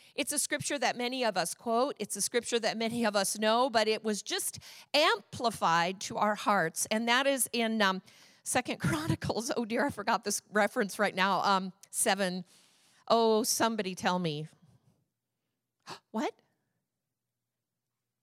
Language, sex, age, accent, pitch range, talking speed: English, female, 50-69, American, 200-270 Hz, 150 wpm